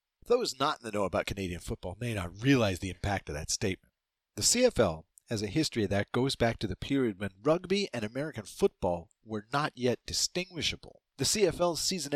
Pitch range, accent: 100-140 Hz, American